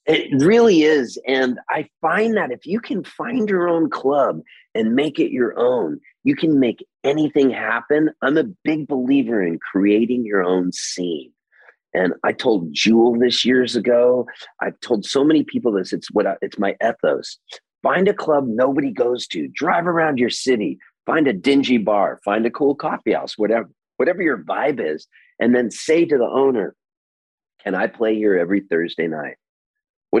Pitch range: 115-185 Hz